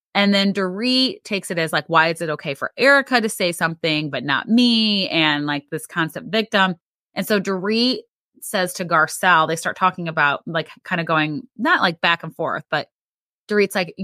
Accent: American